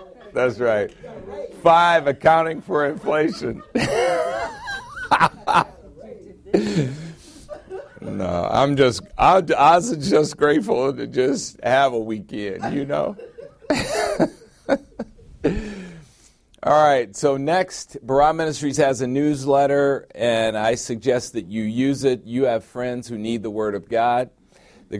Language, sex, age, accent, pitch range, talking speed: English, male, 50-69, American, 105-130 Hz, 110 wpm